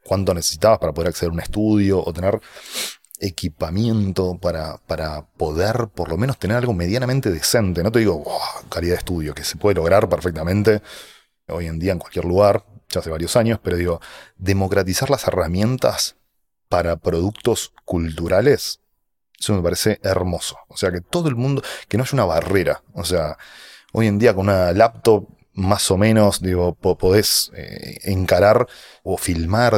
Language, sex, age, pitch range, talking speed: Spanish, male, 30-49, 90-115 Hz, 165 wpm